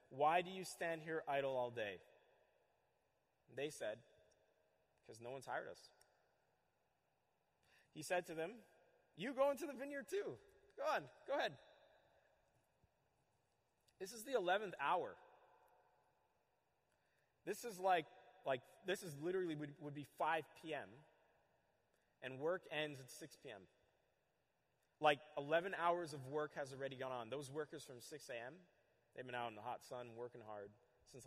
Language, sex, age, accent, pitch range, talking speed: English, male, 30-49, American, 125-165 Hz, 145 wpm